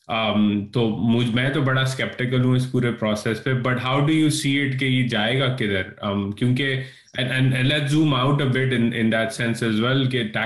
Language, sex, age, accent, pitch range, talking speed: English, male, 20-39, Indian, 105-120 Hz, 190 wpm